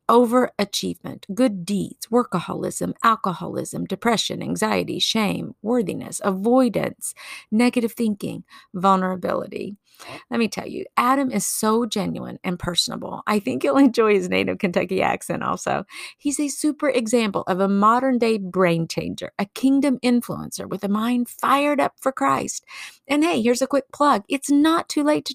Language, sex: English, female